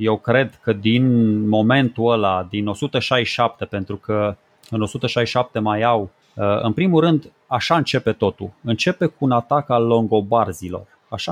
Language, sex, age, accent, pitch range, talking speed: Romanian, male, 30-49, native, 110-150 Hz, 145 wpm